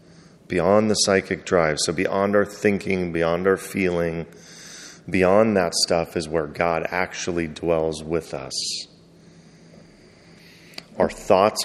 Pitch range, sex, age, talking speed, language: 85-100 Hz, male, 30-49, 120 wpm, English